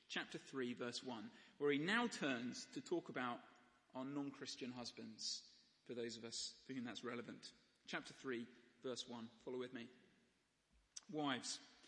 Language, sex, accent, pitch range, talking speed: English, male, British, 135-205 Hz, 150 wpm